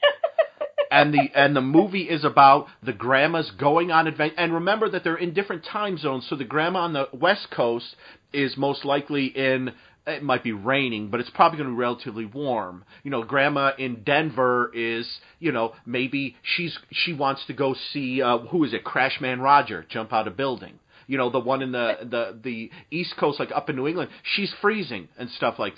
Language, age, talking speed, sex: English, 40-59, 205 wpm, male